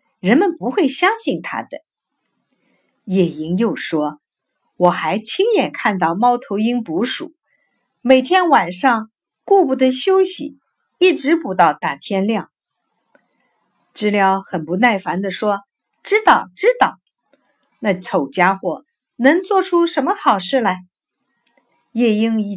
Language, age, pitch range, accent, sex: Chinese, 50-69, 220-315 Hz, native, female